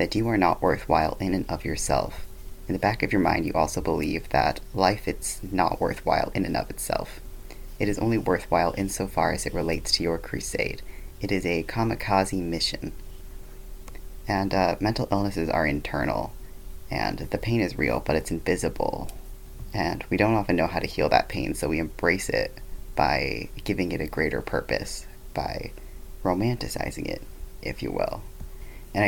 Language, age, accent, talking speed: English, 30-49, American, 175 wpm